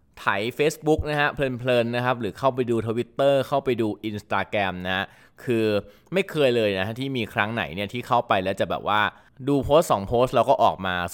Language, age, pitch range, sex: Thai, 20-39, 100-135 Hz, male